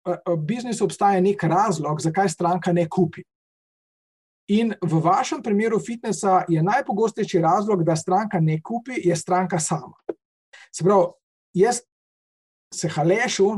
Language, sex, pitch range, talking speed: English, male, 175-225 Hz, 125 wpm